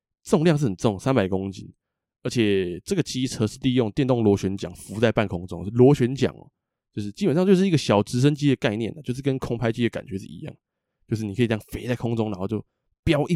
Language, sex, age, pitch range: Chinese, male, 20-39, 105-150 Hz